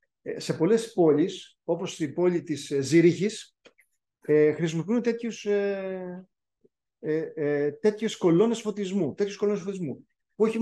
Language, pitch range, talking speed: Greek, 155-205 Hz, 90 wpm